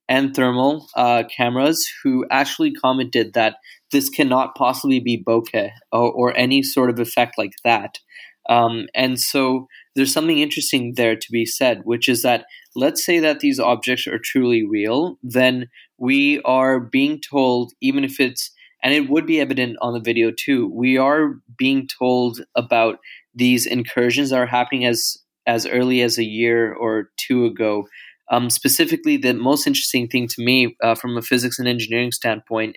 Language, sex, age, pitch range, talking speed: English, male, 20-39, 120-135 Hz, 170 wpm